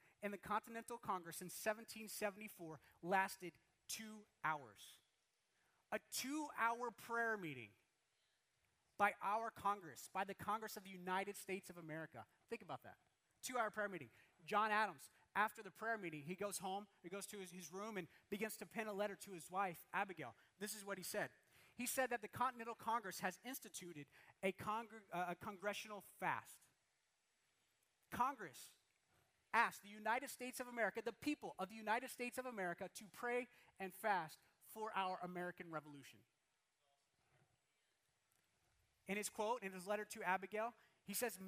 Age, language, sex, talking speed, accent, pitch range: 30-49, English, male, 155 wpm, American, 165-220 Hz